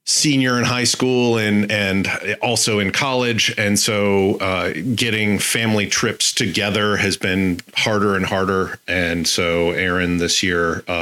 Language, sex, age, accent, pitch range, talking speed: English, male, 40-59, American, 90-105 Hz, 145 wpm